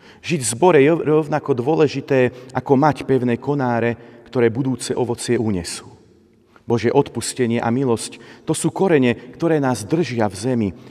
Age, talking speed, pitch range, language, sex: 40-59, 145 wpm, 110-145 Hz, Slovak, male